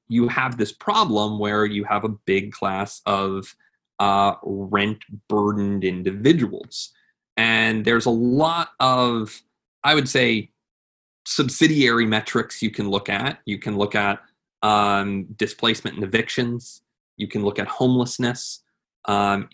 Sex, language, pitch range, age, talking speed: male, English, 100-115 Hz, 20-39, 130 wpm